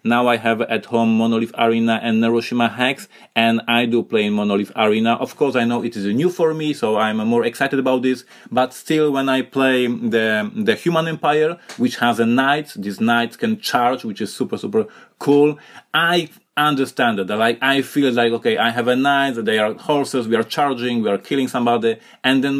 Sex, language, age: male, English, 30-49